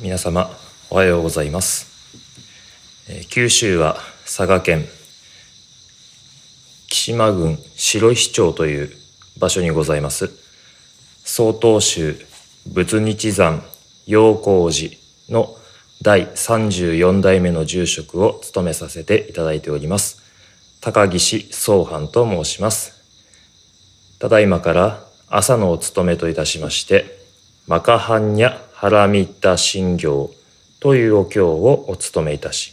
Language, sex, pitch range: Japanese, male, 90-115 Hz